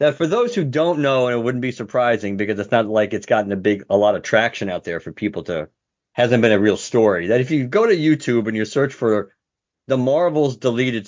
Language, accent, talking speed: English, American, 250 wpm